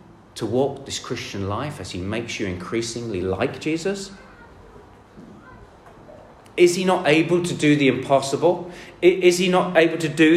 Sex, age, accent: male, 40-59, British